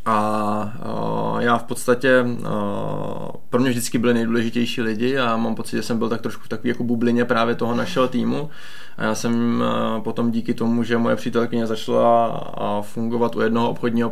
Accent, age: native, 20-39